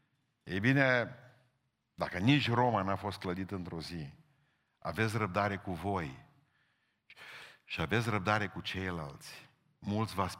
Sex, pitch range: male, 90-115 Hz